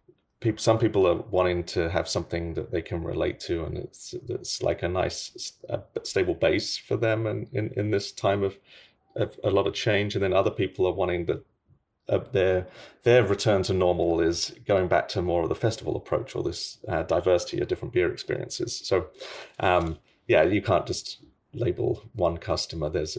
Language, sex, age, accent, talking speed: English, male, 30-49, British, 195 wpm